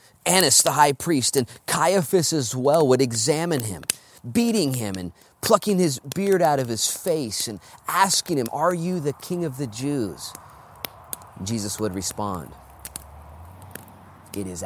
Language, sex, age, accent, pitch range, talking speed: English, male, 30-49, American, 105-165 Hz, 145 wpm